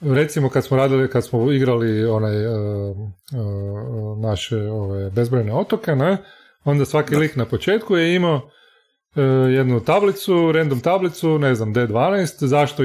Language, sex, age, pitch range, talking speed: Croatian, male, 30-49, 115-160 Hz, 145 wpm